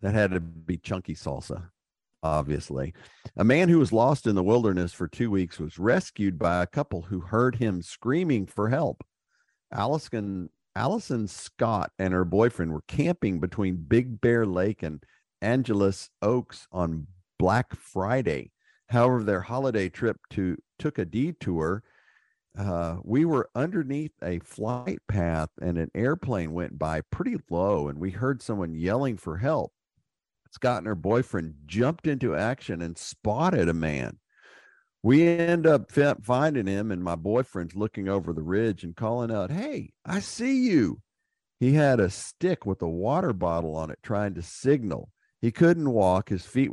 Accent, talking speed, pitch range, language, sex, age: American, 160 wpm, 85-120 Hz, English, male, 50-69